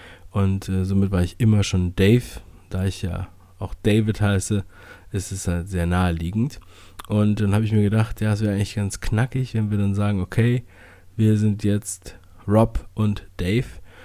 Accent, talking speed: German, 180 wpm